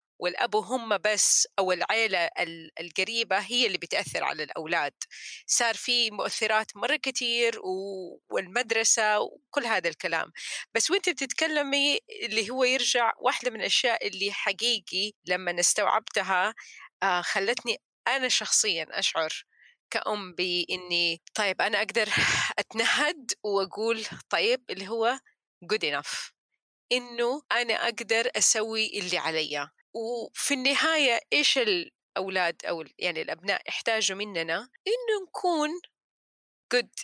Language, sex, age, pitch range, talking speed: Arabic, female, 30-49, 195-265 Hz, 110 wpm